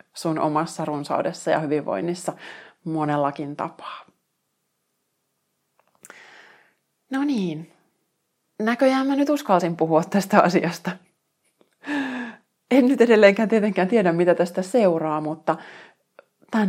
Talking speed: 95 wpm